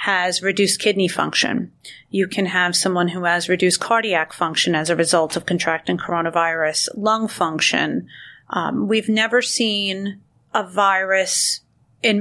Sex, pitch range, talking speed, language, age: female, 175-210 Hz, 140 wpm, English, 40-59